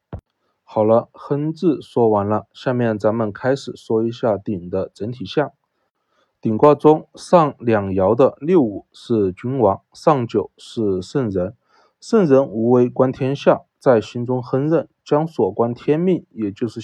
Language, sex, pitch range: Chinese, male, 110-150 Hz